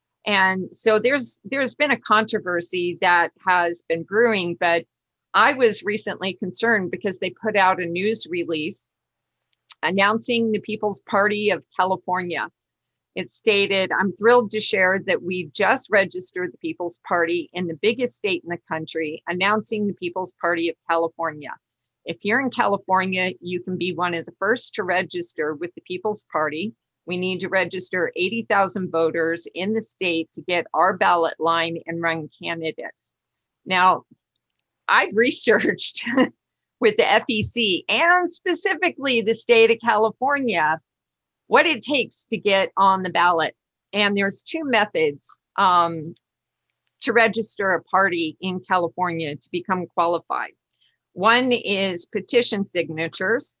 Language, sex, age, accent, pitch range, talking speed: English, female, 50-69, American, 170-220 Hz, 140 wpm